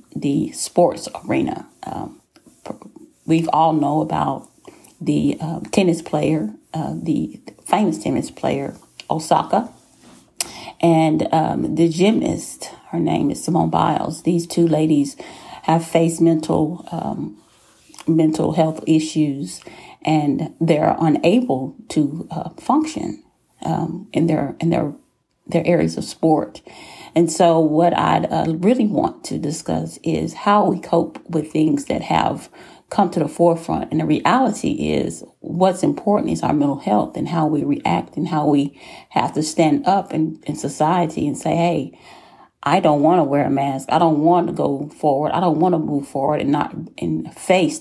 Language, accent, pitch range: English, American, 150-170 Hz